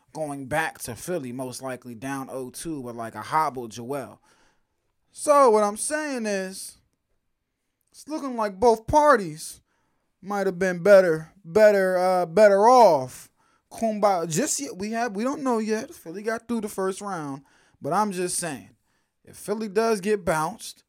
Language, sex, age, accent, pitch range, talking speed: English, male, 20-39, American, 145-215 Hz, 160 wpm